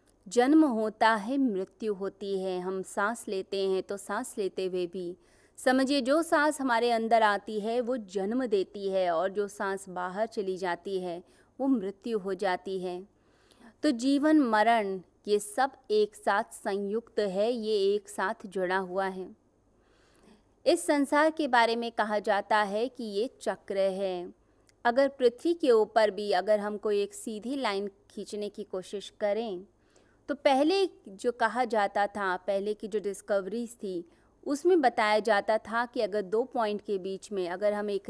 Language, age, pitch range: Hindi, 20-39, 195-245 Hz